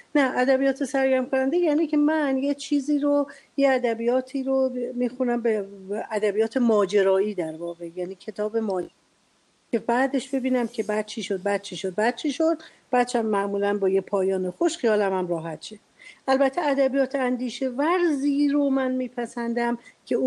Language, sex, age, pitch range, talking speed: Arabic, female, 50-69, 190-245 Hz, 155 wpm